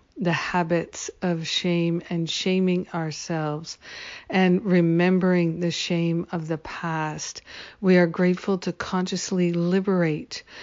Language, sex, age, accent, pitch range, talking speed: English, female, 50-69, American, 170-190 Hz, 115 wpm